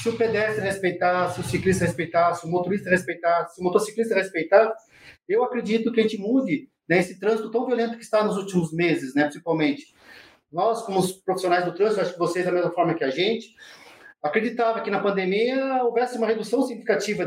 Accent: Brazilian